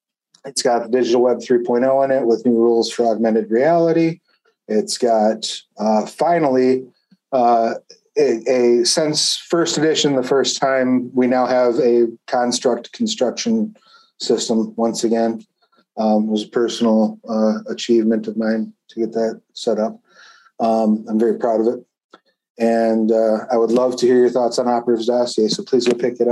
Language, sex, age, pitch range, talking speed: English, male, 30-49, 110-125 Hz, 165 wpm